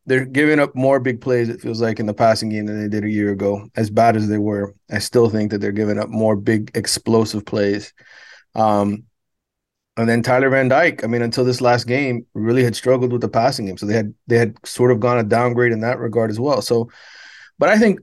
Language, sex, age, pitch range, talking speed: English, male, 30-49, 115-150 Hz, 245 wpm